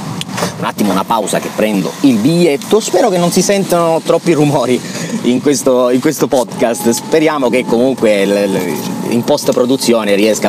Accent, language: native, Italian